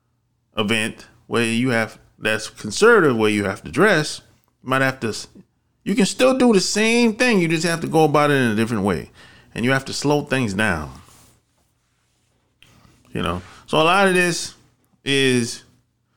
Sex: male